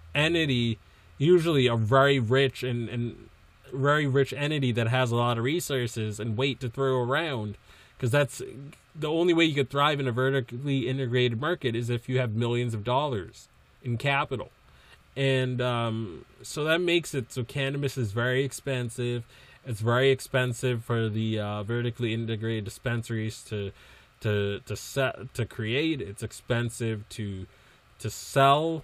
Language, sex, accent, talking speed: English, male, American, 155 wpm